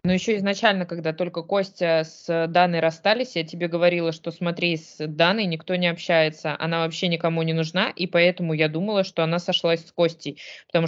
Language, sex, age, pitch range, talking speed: Russian, female, 20-39, 160-180 Hz, 190 wpm